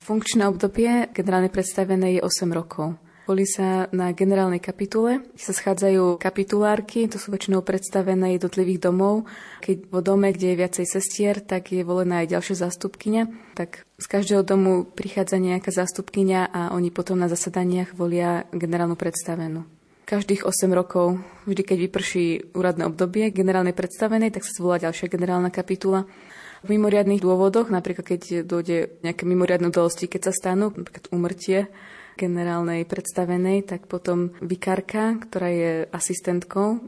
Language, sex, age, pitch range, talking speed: Slovak, female, 20-39, 180-195 Hz, 140 wpm